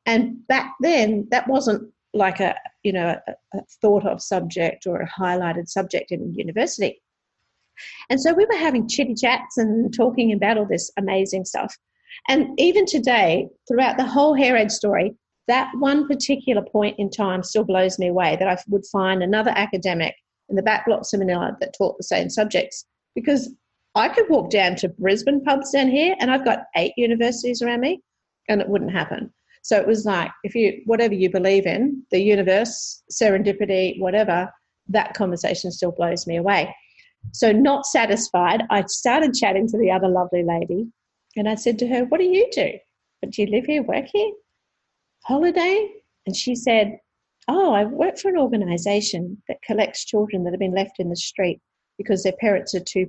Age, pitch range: 50-69, 190-260 Hz